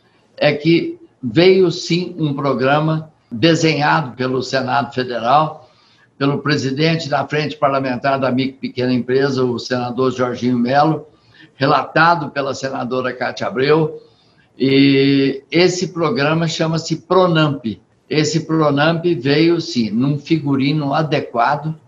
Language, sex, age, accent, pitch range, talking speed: Portuguese, male, 60-79, Brazilian, 130-160 Hz, 110 wpm